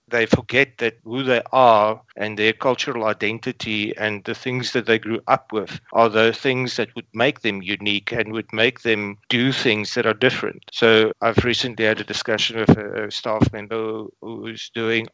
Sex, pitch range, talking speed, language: male, 110-120 Hz, 190 wpm, English